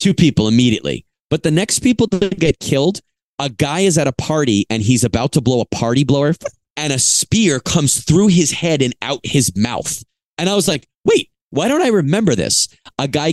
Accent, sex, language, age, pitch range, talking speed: American, male, English, 30-49, 120-160 Hz, 210 wpm